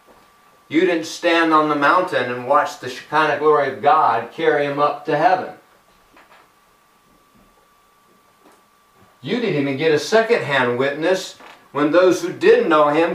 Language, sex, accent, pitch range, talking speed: English, male, American, 150-215 Hz, 140 wpm